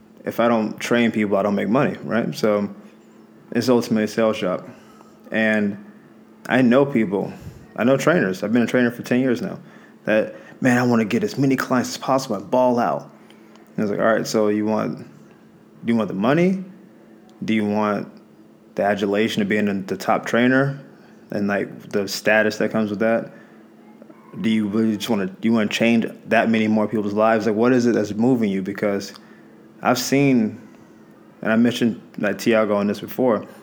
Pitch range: 105-120 Hz